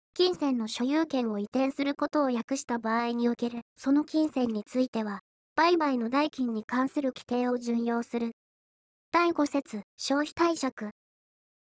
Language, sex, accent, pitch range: Japanese, male, native, 235-300 Hz